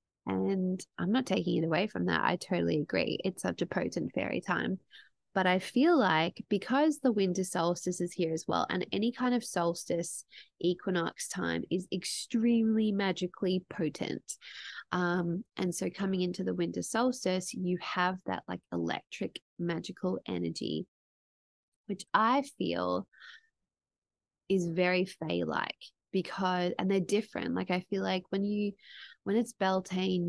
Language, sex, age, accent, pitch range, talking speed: English, female, 20-39, Australian, 175-215 Hz, 145 wpm